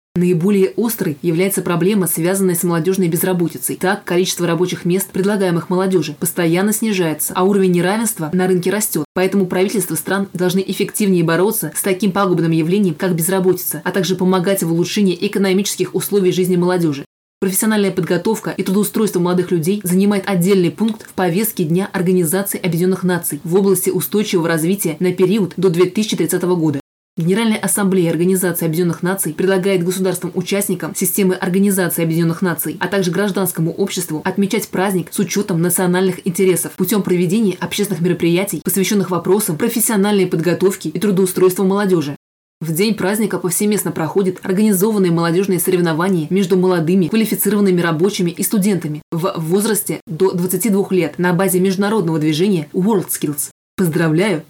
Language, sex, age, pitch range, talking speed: Russian, female, 20-39, 175-195 Hz, 135 wpm